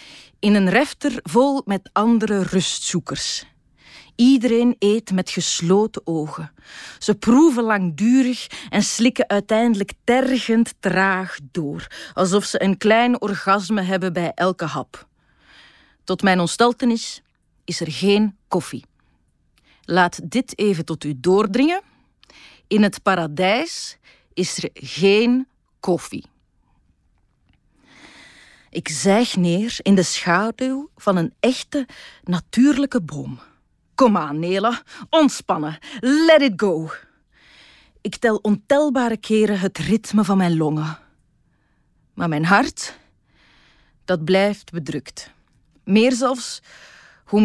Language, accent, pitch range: Dutch, Dutch, 175-235 Hz